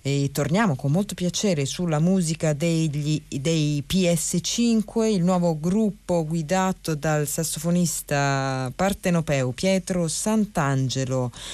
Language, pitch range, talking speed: Italian, 140-180 Hz, 90 wpm